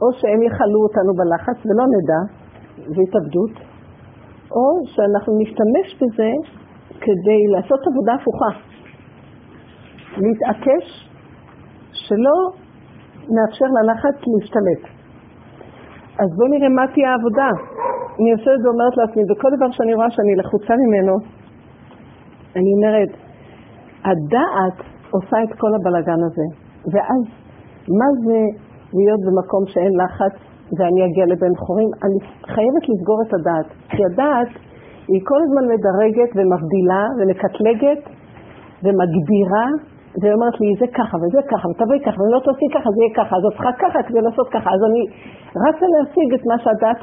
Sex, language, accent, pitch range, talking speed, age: female, Hebrew, native, 195-245 Hz, 130 wpm, 50-69